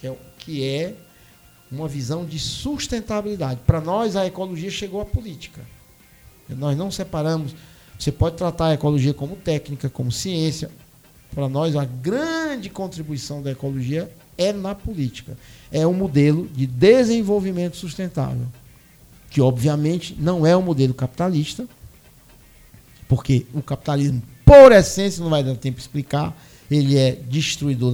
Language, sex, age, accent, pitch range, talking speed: Portuguese, male, 50-69, Brazilian, 135-180 Hz, 135 wpm